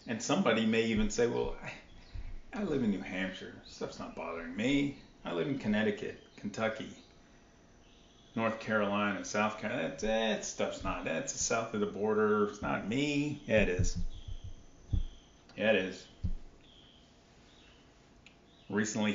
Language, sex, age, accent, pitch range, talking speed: English, male, 40-59, American, 100-120 Hz, 140 wpm